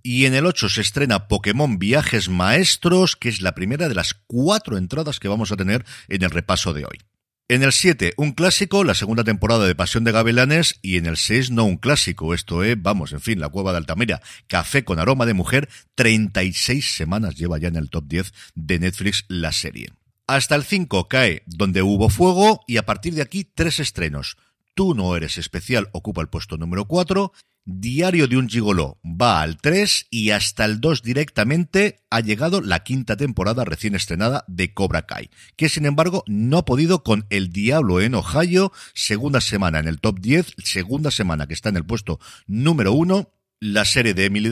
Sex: male